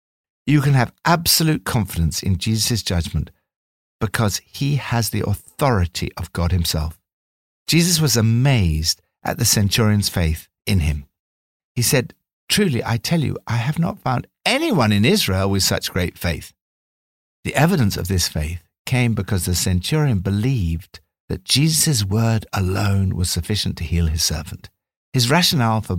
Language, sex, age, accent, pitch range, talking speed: English, male, 60-79, British, 85-130 Hz, 150 wpm